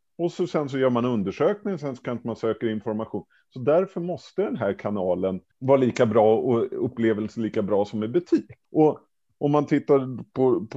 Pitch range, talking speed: 100-130 Hz, 185 wpm